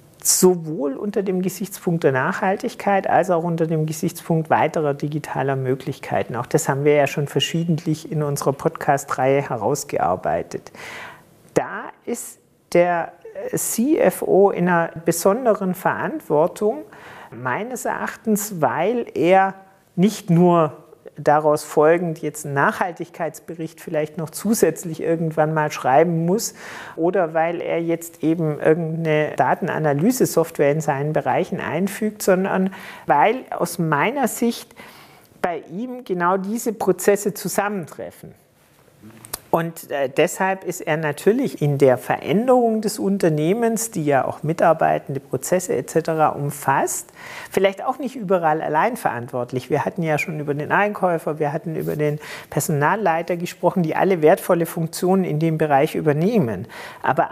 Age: 50-69